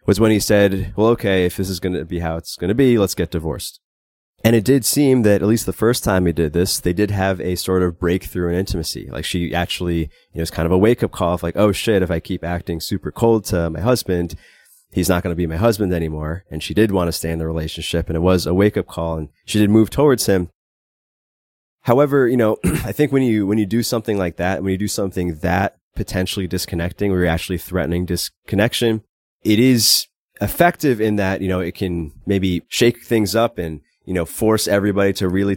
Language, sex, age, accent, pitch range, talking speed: English, male, 20-39, American, 85-105 Hz, 240 wpm